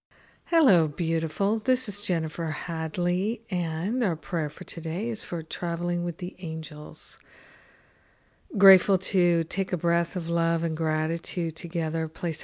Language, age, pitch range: English, 50-69, 160-180 Hz